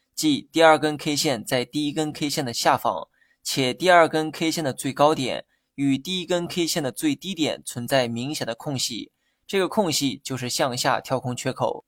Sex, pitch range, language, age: male, 130-160 Hz, Chinese, 20-39